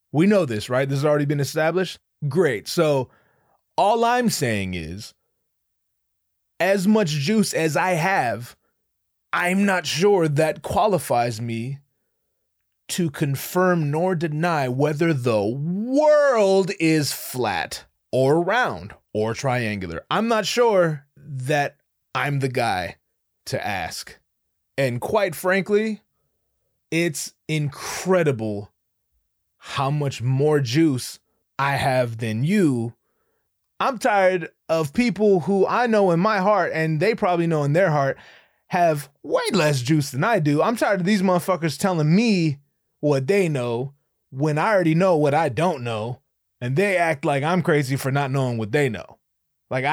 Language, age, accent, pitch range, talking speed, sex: English, 30-49, American, 135-185 Hz, 140 wpm, male